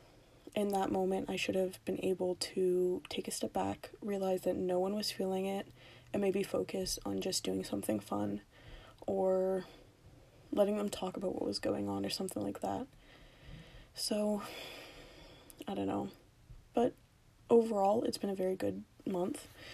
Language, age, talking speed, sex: English, 20-39, 160 wpm, female